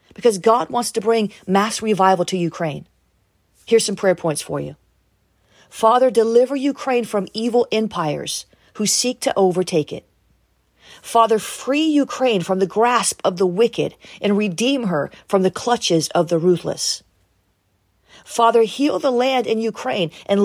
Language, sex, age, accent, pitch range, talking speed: English, female, 40-59, American, 170-225 Hz, 150 wpm